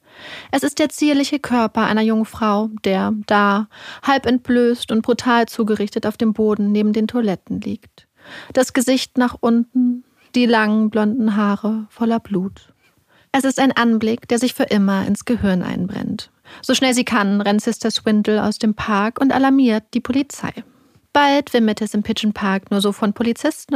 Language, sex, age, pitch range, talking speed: German, female, 30-49, 210-250 Hz, 170 wpm